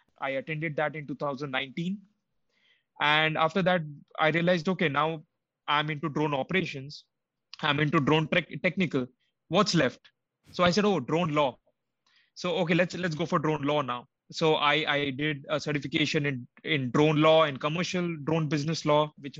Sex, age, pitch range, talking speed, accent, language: male, 20-39, 145-170 Hz, 165 wpm, Indian, English